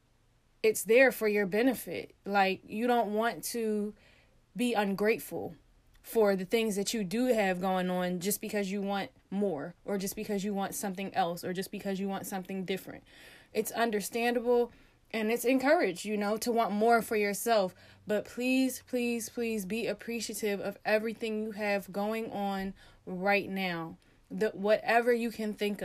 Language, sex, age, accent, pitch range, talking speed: English, female, 20-39, American, 200-235 Hz, 165 wpm